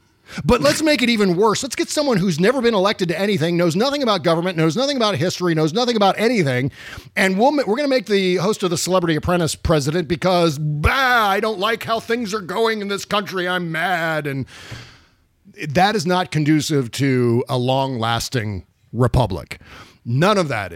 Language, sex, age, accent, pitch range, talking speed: English, male, 40-59, American, 130-185 Hz, 190 wpm